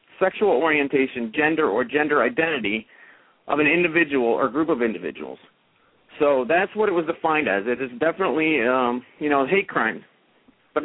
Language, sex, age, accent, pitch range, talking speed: English, male, 40-59, American, 130-165 Hz, 160 wpm